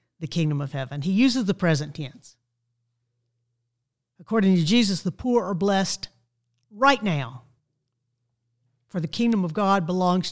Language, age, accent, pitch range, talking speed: English, 50-69, American, 120-185 Hz, 140 wpm